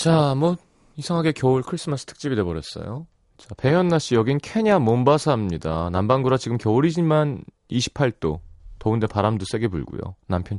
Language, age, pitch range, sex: Korean, 30-49, 100-145 Hz, male